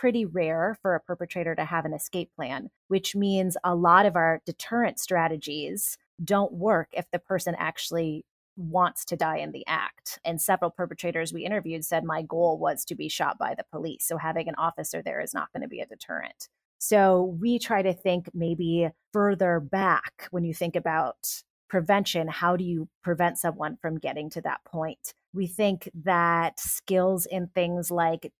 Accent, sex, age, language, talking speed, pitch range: American, female, 30-49, English, 185 wpm, 165-190 Hz